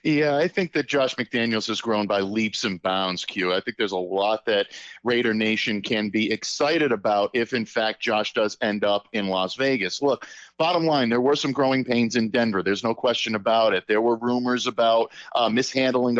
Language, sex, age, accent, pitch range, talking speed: English, male, 50-69, American, 110-125 Hz, 210 wpm